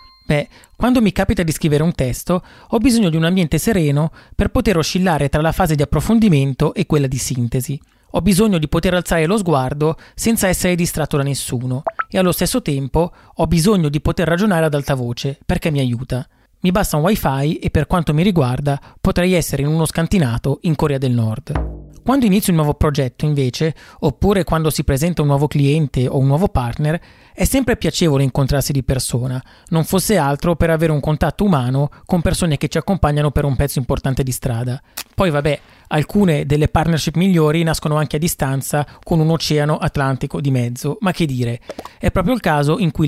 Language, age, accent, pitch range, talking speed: Italian, 30-49, native, 140-180 Hz, 190 wpm